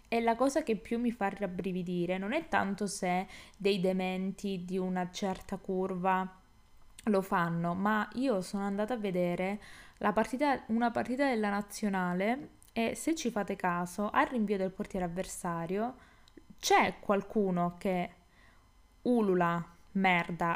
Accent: native